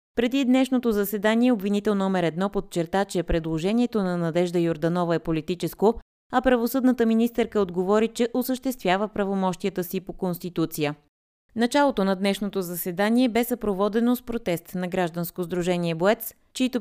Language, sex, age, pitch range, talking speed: Bulgarian, female, 20-39, 170-220 Hz, 130 wpm